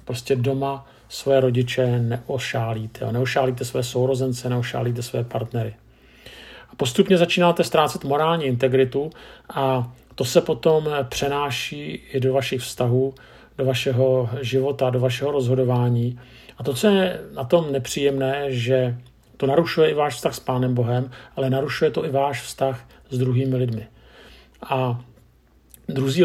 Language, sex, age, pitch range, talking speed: Czech, male, 50-69, 120-140 Hz, 135 wpm